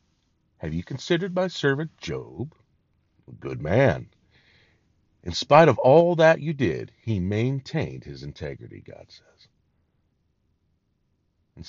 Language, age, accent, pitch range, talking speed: English, 50-69, American, 95-135 Hz, 120 wpm